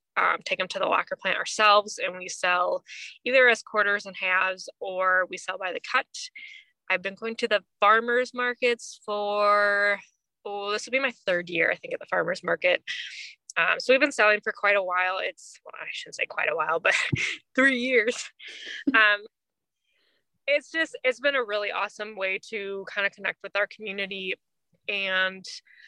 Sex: female